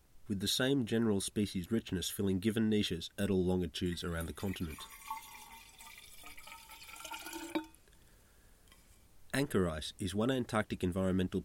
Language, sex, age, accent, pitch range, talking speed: English, male, 30-49, Australian, 85-110 Hz, 110 wpm